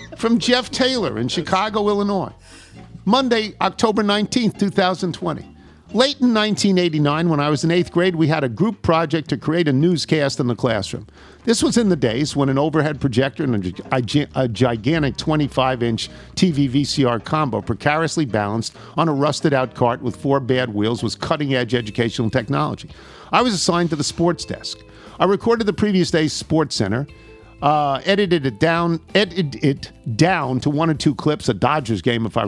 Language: English